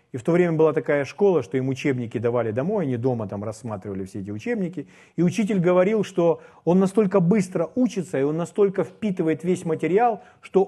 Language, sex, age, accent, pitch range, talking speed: Russian, male, 40-59, native, 140-190 Hz, 190 wpm